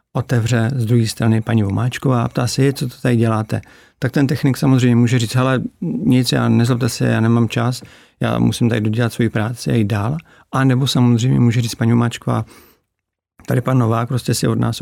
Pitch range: 115-130 Hz